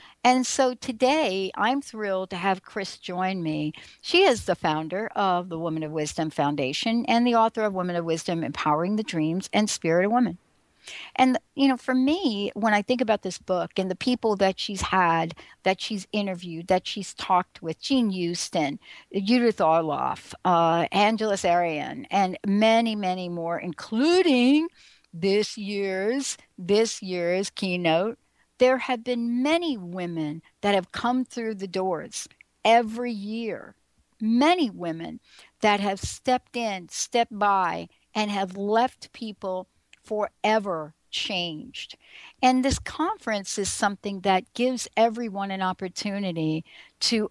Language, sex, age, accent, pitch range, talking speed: English, female, 60-79, American, 180-235 Hz, 145 wpm